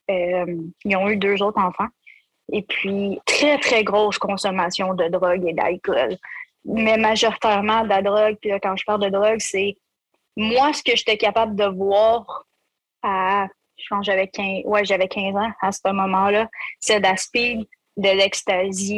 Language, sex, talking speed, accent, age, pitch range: French, female, 175 wpm, Canadian, 20-39, 190-220 Hz